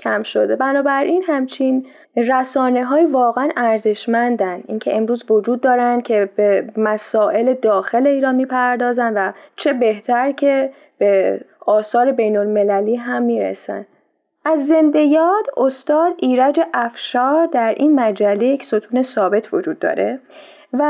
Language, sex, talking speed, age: Persian, female, 120 wpm, 10-29